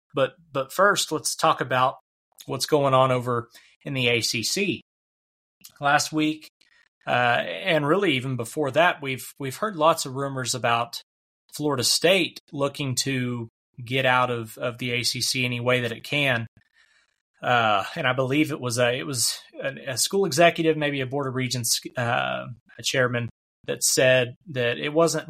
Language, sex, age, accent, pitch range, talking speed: English, male, 30-49, American, 120-150 Hz, 165 wpm